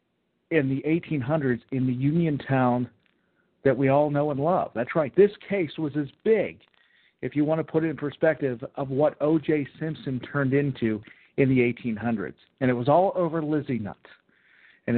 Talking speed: 180 wpm